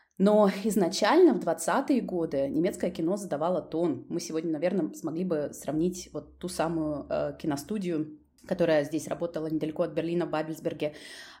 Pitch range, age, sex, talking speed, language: 160-200 Hz, 20-39, female, 145 wpm, Russian